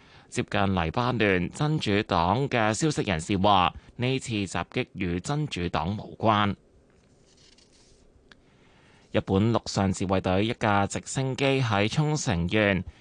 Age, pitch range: 20-39, 95-125 Hz